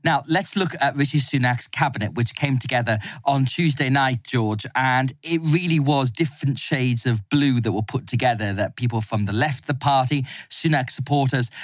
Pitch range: 120-140 Hz